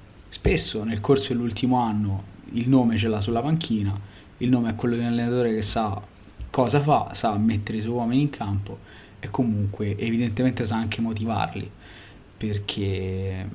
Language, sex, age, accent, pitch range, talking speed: Italian, male, 20-39, native, 105-115 Hz, 160 wpm